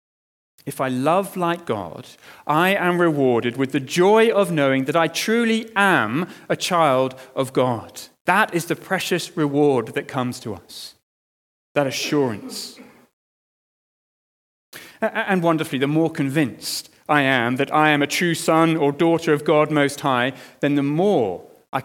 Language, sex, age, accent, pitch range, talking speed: English, male, 40-59, British, 145-190 Hz, 150 wpm